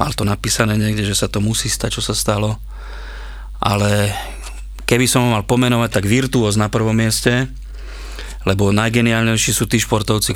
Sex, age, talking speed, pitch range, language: male, 30-49, 160 wpm, 105-120 Hz, Slovak